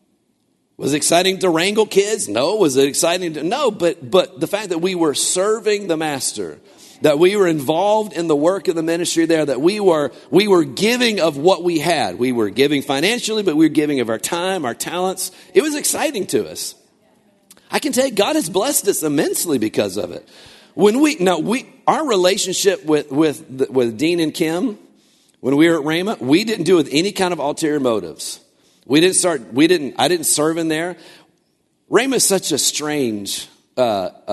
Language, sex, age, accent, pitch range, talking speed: English, male, 50-69, American, 125-185 Hz, 200 wpm